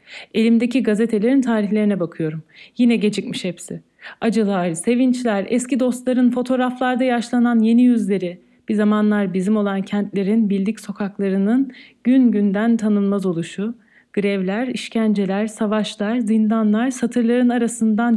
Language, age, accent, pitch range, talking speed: Turkish, 40-59, native, 190-230 Hz, 105 wpm